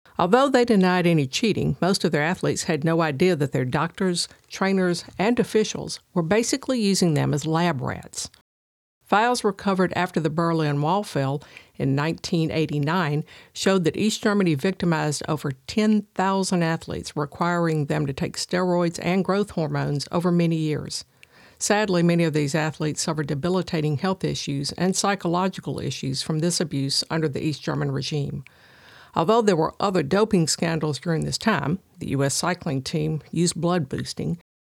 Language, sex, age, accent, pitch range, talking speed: English, female, 50-69, American, 155-190 Hz, 155 wpm